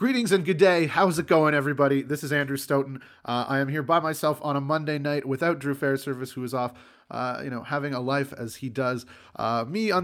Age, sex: 30-49, male